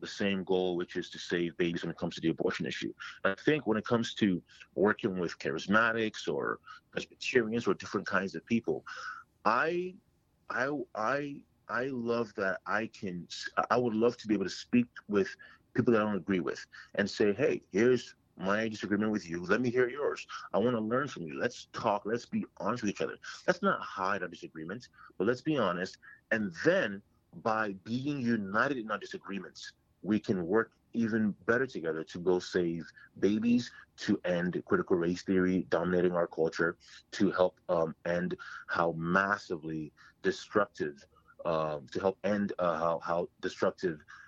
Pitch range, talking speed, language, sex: 85-115 Hz, 175 wpm, English, male